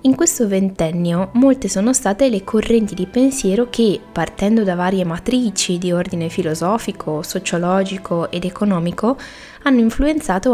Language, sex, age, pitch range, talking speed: Italian, female, 20-39, 175-205 Hz, 130 wpm